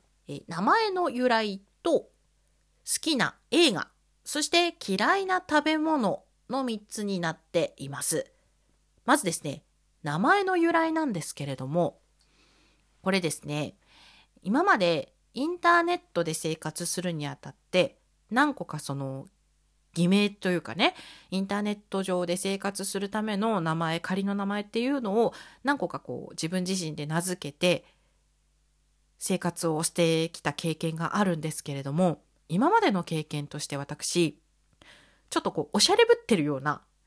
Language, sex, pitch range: Japanese, female, 155-230 Hz